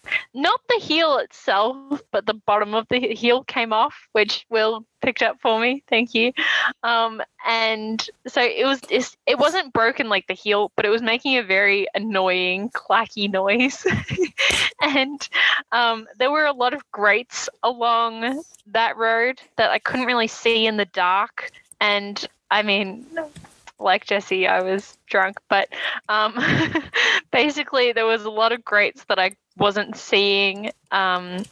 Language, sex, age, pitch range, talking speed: English, female, 10-29, 195-240 Hz, 155 wpm